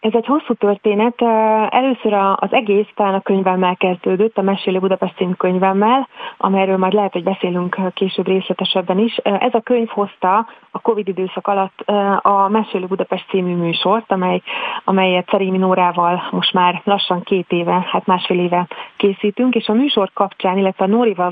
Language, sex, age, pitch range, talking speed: Hungarian, female, 30-49, 185-210 Hz, 155 wpm